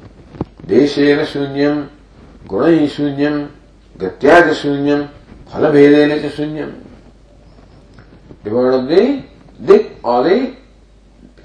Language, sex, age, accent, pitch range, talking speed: English, male, 50-69, Indian, 135-190 Hz, 85 wpm